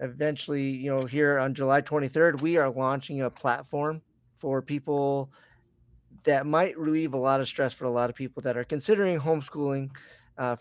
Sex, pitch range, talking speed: male, 130-155 Hz, 175 wpm